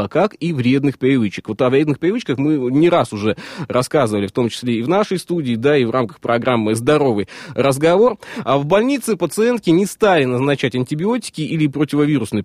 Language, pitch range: Russian, 125-165 Hz